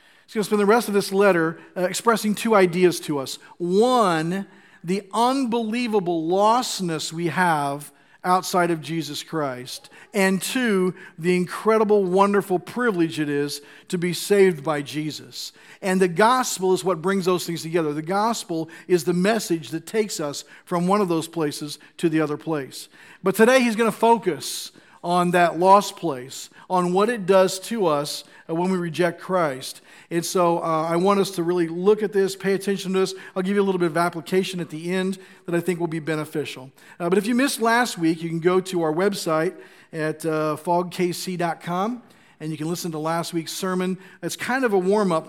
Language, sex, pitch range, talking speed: English, male, 160-195 Hz, 190 wpm